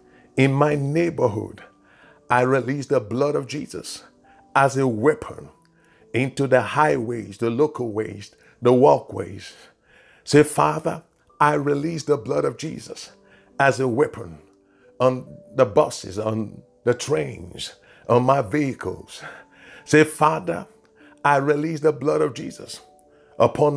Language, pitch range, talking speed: English, 110-150 Hz, 125 wpm